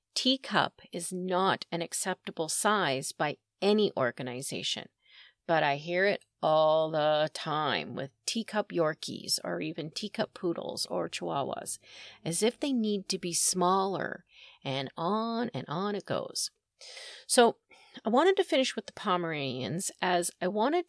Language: English